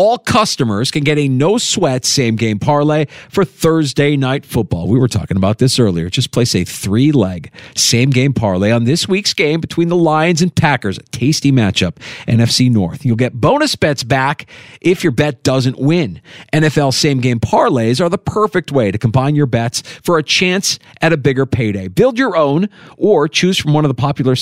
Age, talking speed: 40-59, 185 wpm